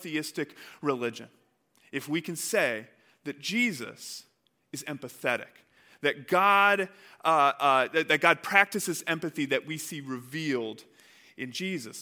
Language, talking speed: English, 125 wpm